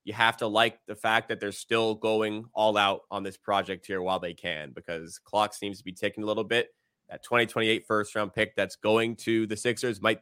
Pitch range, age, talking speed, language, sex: 105-125 Hz, 20-39, 230 wpm, English, male